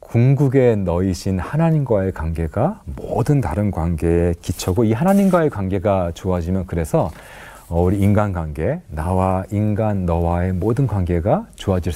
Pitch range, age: 85-115 Hz, 40-59